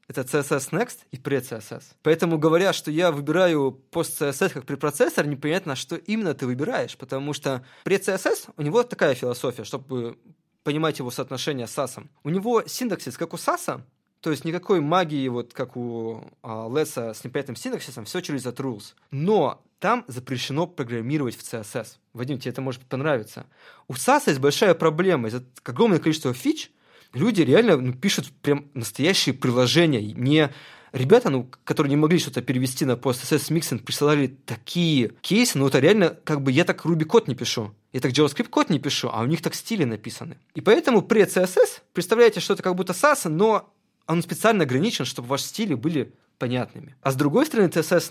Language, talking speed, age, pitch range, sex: Russian, 175 wpm, 20-39, 125-170 Hz, male